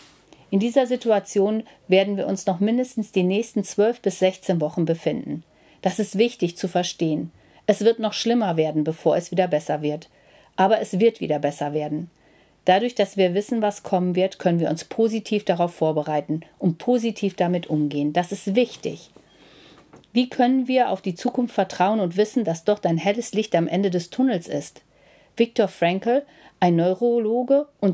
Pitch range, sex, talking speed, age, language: 165-215 Hz, female, 170 wpm, 40-59, German